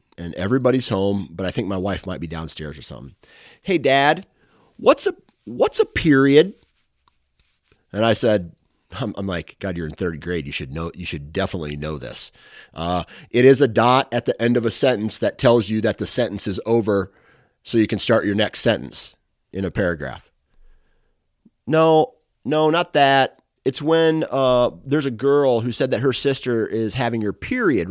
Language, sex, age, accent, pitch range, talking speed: English, male, 30-49, American, 90-130 Hz, 185 wpm